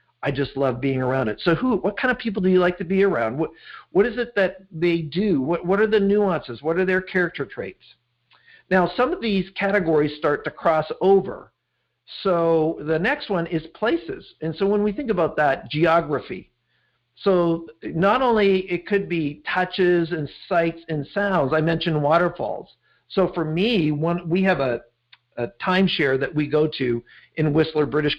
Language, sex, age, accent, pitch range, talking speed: English, male, 50-69, American, 140-185 Hz, 185 wpm